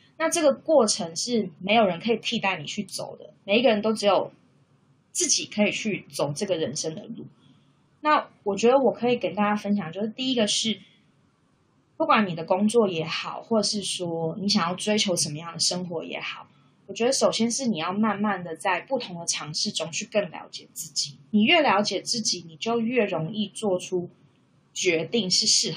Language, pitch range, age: Chinese, 165-230 Hz, 20-39